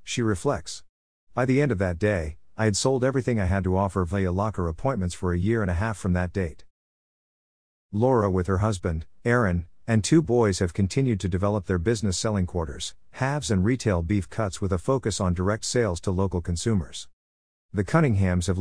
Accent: American